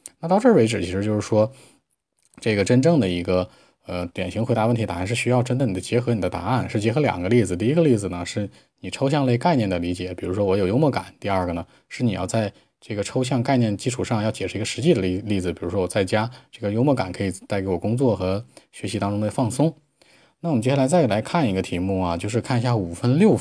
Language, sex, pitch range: Chinese, male, 95-120 Hz